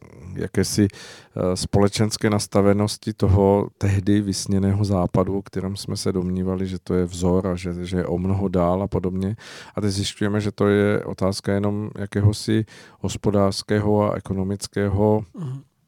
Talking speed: 135 wpm